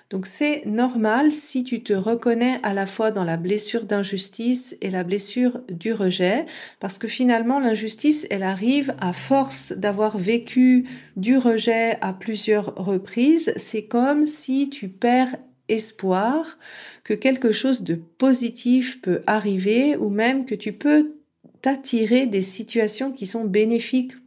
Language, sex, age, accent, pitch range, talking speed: French, female, 40-59, French, 200-255 Hz, 145 wpm